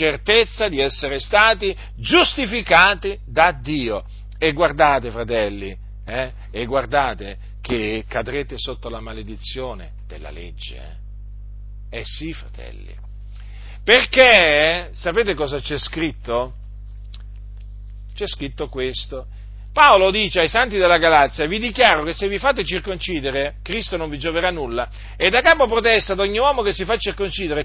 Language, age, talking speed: Italian, 50-69, 130 wpm